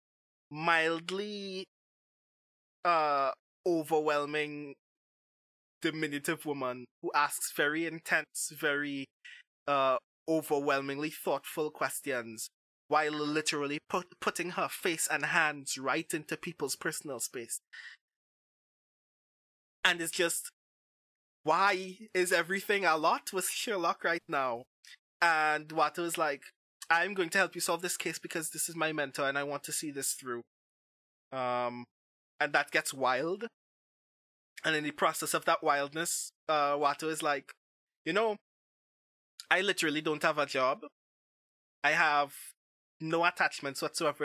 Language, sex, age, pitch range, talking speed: English, male, 20-39, 145-170 Hz, 125 wpm